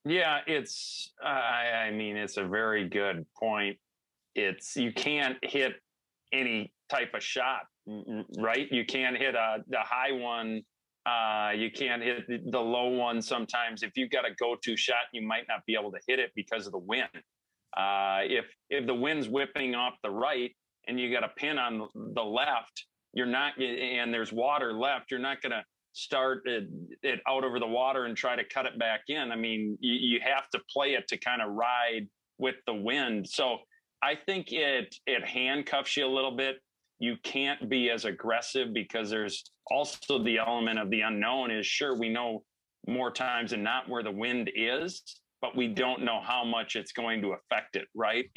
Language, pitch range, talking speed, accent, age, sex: English, 110-130 Hz, 190 wpm, American, 40-59, male